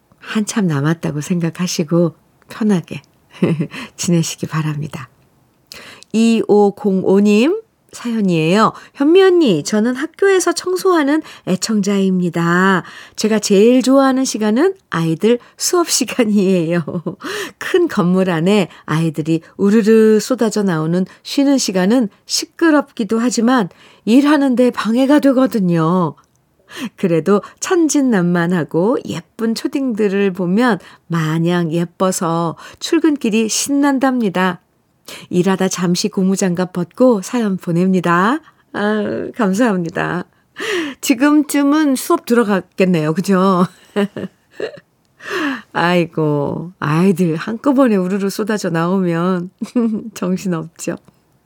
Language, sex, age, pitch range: Korean, female, 50-69, 175-250 Hz